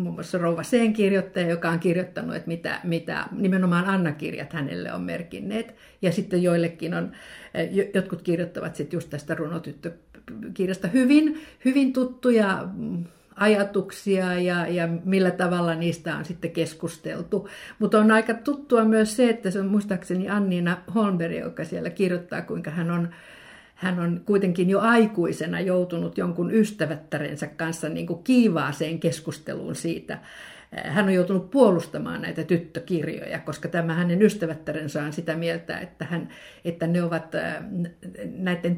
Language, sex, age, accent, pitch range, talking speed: Finnish, female, 50-69, native, 165-200 Hz, 130 wpm